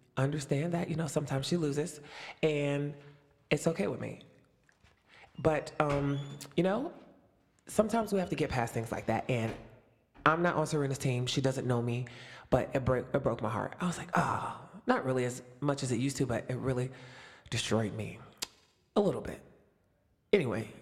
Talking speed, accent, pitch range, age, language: 180 wpm, American, 125-165 Hz, 20-39, English